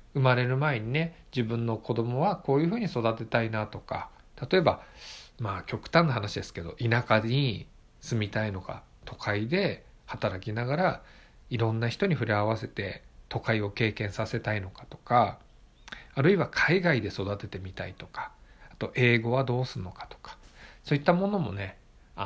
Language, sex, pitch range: Japanese, male, 105-150 Hz